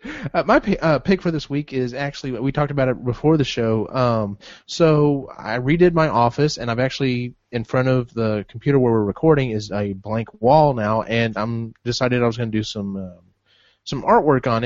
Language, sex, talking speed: English, male, 210 wpm